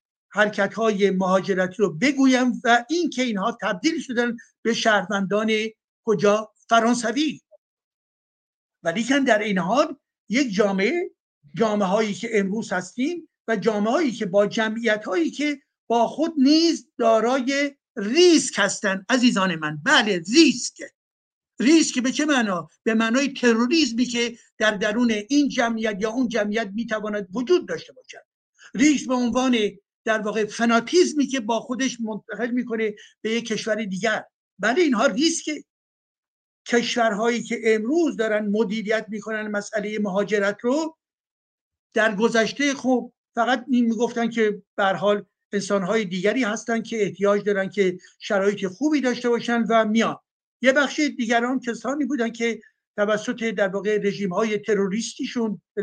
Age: 60-79